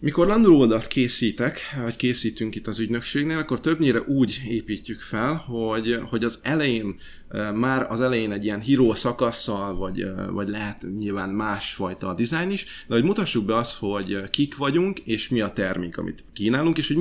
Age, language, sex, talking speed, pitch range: 20-39, Hungarian, male, 170 wpm, 100-125 Hz